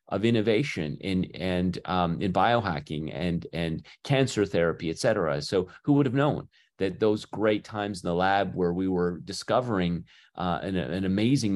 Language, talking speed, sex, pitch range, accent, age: English, 165 wpm, male, 90-110 Hz, American, 30-49